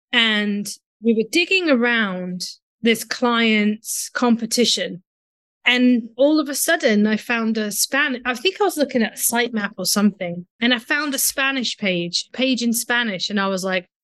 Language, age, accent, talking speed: English, 30-49, British, 170 wpm